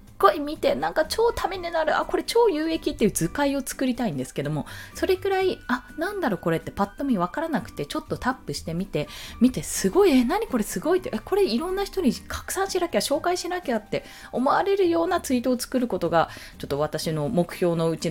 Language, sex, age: Japanese, female, 20-39